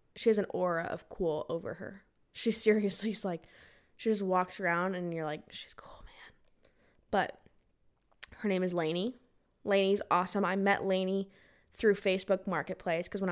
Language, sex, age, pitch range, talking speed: English, female, 10-29, 185-235 Hz, 165 wpm